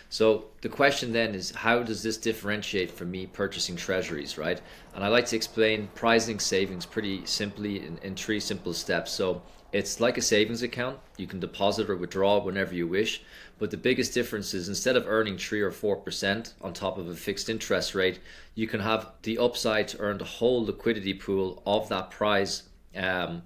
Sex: male